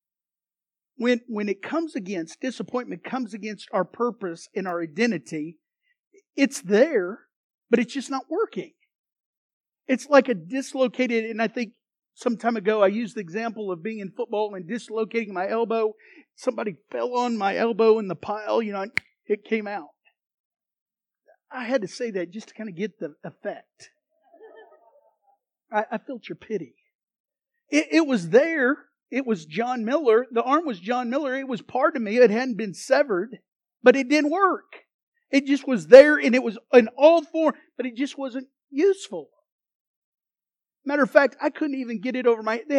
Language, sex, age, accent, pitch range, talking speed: English, male, 50-69, American, 215-280 Hz, 175 wpm